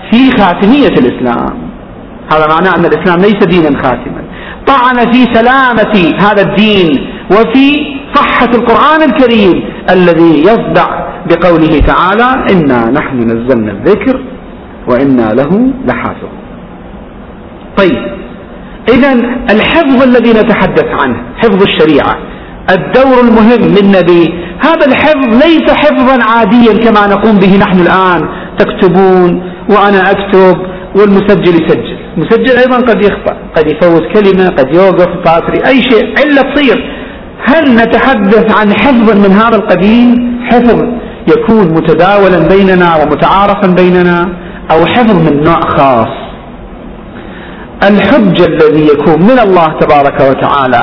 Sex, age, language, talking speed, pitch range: male, 50-69, Arabic, 110 wpm, 180-245 Hz